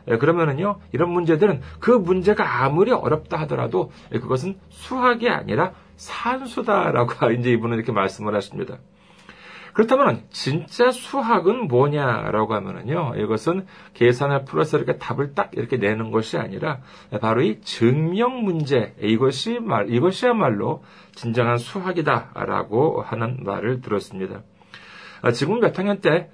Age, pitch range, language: 40-59, 110-175 Hz, Korean